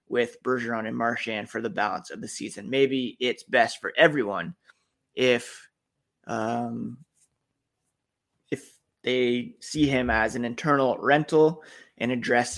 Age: 20-39